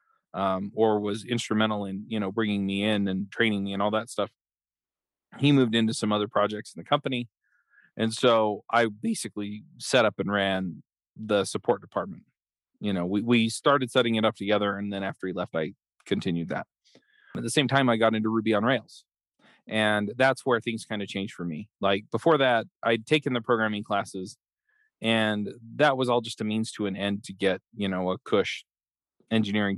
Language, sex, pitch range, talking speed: English, male, 100-120 Hz, 200 wpm